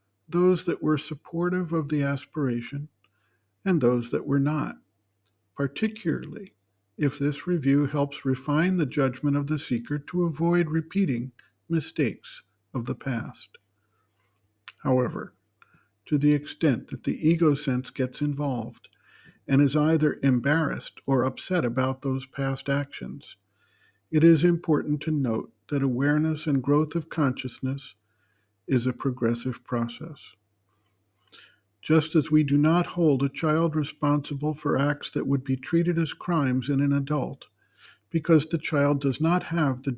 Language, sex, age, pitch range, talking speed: English, male, 50-69, 125-155 Hz, 140 wpm